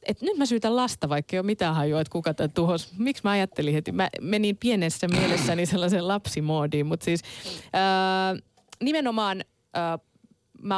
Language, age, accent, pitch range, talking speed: Finnish, 20-39, native, 150-205 Hz, 165 wpm